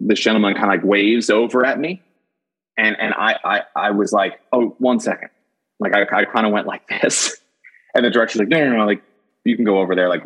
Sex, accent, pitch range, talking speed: male, American, 100-130 Hz, 240 wpm